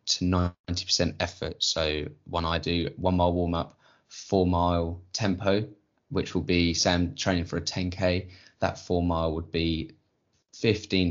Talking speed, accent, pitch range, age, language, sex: 145 wpm, British, 80-95 Hz, 10-29, English, male